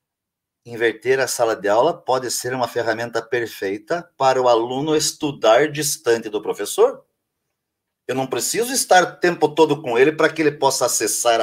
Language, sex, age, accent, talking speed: Portuguese, male, 40-59, Brazilian, 165 wpm